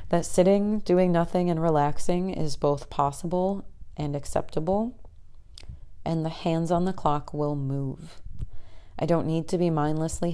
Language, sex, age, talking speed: English, female, 30-49, 145 wpm